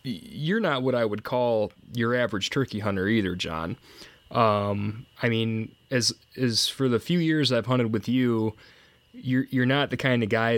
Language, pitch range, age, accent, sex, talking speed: English, 100-115 Hz, 20-39, American, male, 180 wpm